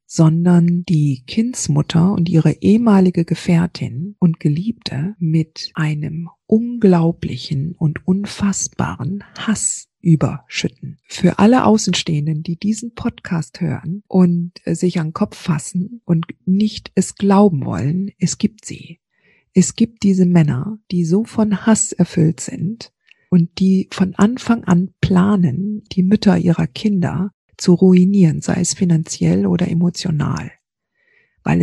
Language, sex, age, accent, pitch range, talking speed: German, female, 50-69, German, 160-190 Hz, 120 wpm